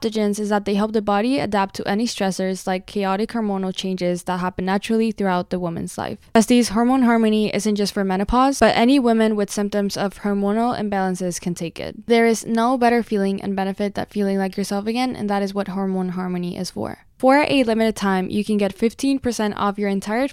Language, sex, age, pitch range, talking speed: English, female, 10-29, 200-230 Hz, 205 wpm